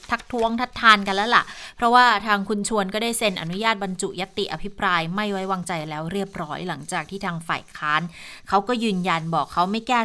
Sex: female